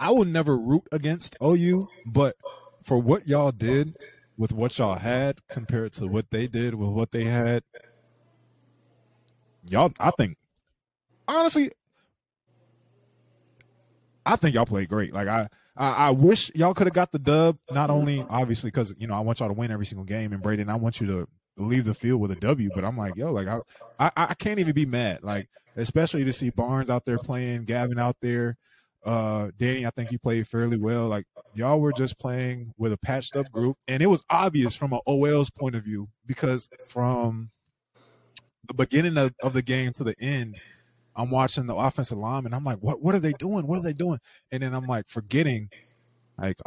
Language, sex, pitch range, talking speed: English, male, 110-140 Hz, 200 wpm